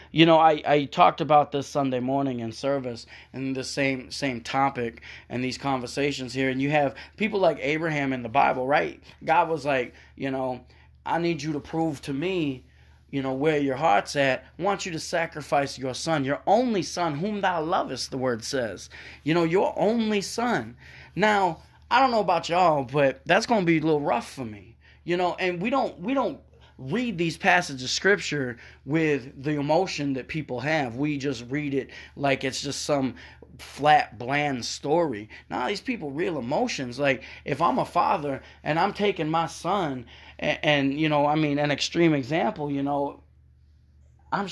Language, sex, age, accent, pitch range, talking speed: English, male, 20-39, American, 130-170 Hz, 190 wpm